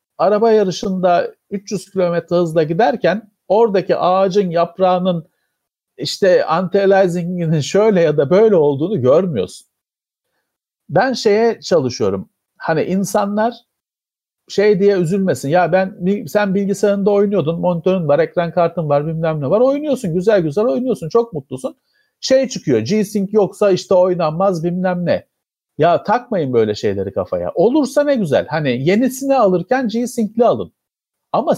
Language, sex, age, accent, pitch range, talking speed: Turkish, male, 50-69, native, 155-215 Hz, 125 wpm